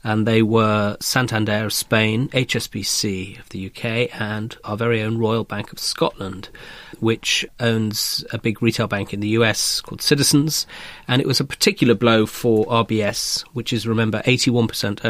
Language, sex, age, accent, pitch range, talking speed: English, male, 30-49, British, 110-125 Hz, 165 wpm